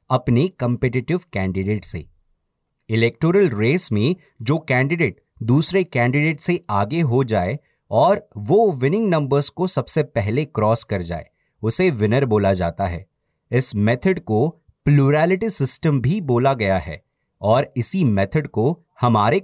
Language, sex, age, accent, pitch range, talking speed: Hindi, male, 30-49, native, 110-165 Hz, 135 wpm